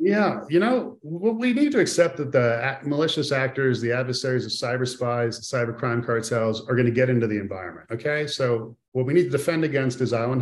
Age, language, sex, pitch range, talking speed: 40-59, English, male, 115-140 Hz, 215 wpm